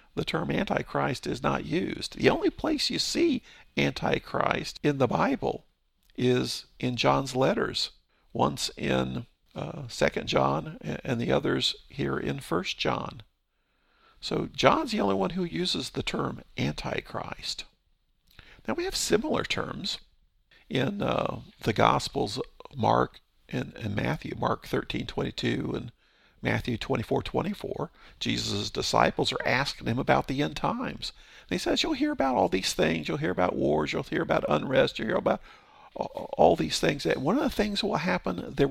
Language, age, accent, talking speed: English, 50-69, American, 155 wpm